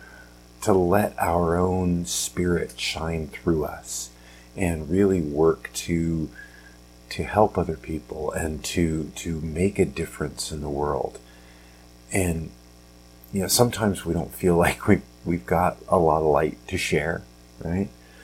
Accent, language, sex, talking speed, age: American, English, male, 145 wpm, 40-59